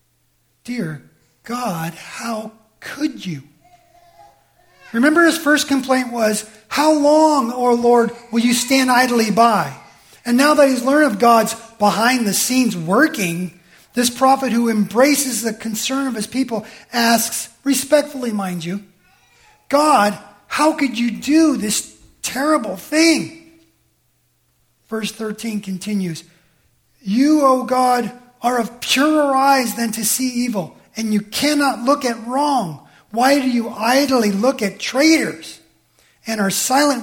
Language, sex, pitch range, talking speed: English, male, 200-260 Hz, 130 wpm